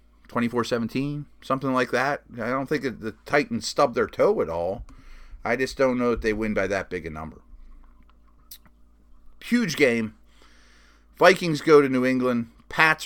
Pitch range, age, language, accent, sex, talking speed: 110-135 Hz, 30-49, English, American, male, 160 wpm